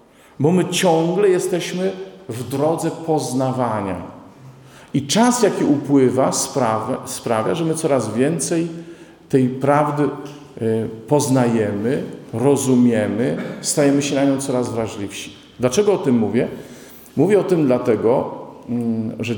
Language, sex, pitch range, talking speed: Polish, male, 115-150 Hz, 110 wpm